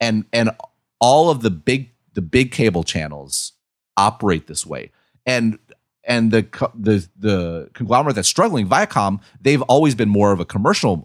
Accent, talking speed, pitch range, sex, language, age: American, 155 wpm, 90-130 Hz, male, English, 30-49